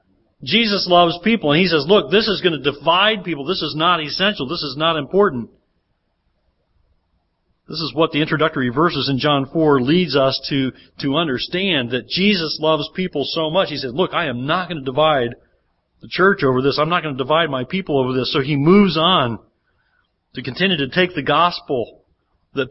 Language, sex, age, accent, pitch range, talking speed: English, male, 40-59, American, 125-170 Hz, 195 wpm